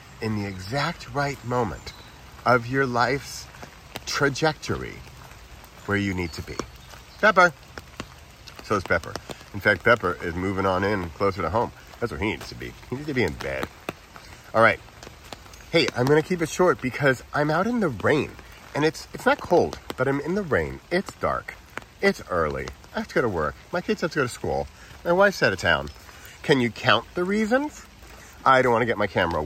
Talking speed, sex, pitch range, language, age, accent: 200 wpm, male, 90-145 Hz, English, 40-59, American